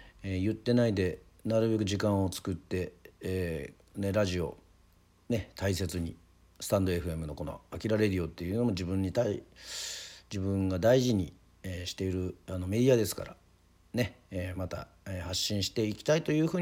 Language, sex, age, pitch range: Japanese, male, 50-69, 90-115 Hz